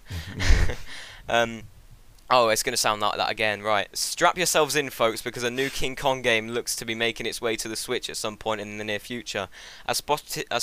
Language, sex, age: English, male, 10-29